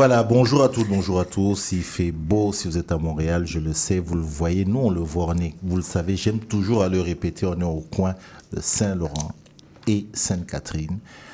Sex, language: male, French